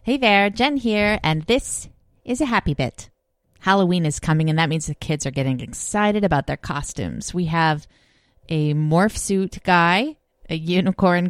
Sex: female